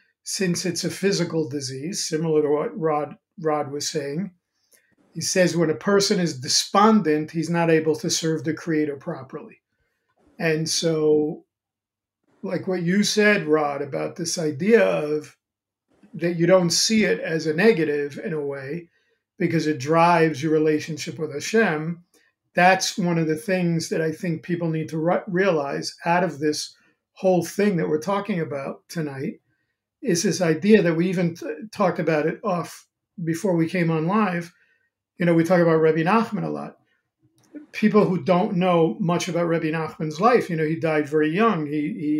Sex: male